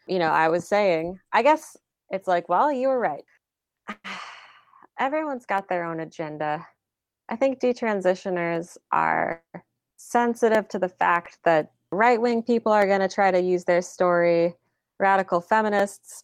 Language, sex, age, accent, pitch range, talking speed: English, female, 20-39, American, 160-210 Hz, 145 wpm